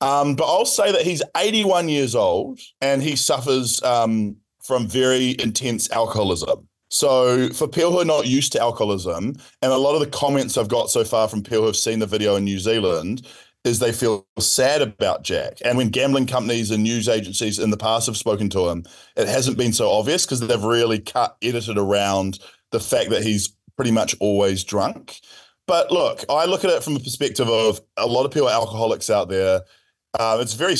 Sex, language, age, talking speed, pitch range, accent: male, English, 20-39, 205 wpm, 105-130 Hz, Australian